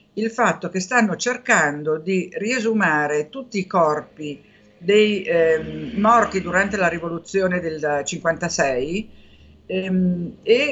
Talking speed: 110 wpm